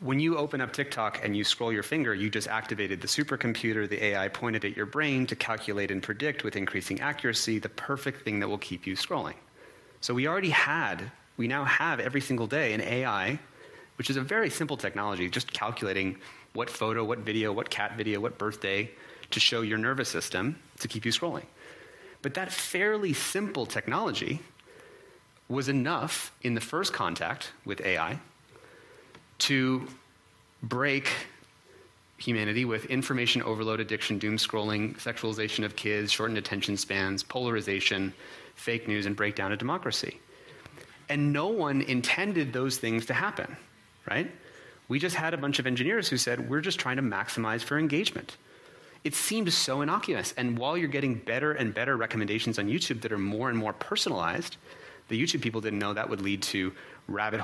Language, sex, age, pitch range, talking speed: English, male, 30-49, 105-140 Hz, 170 wpm